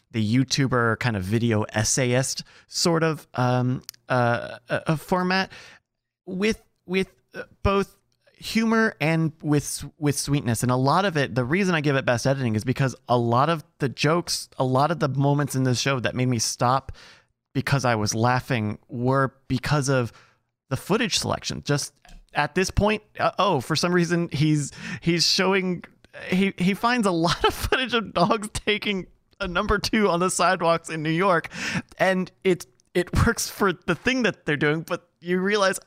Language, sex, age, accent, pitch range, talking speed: English, male, 30-49, American, 125-185 Hz, 180 wpm